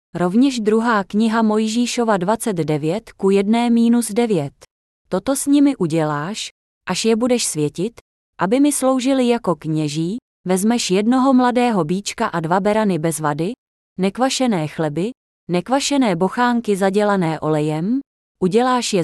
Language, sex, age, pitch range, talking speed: Czech, female, 20-39, 170-245 Hz, 120 wpm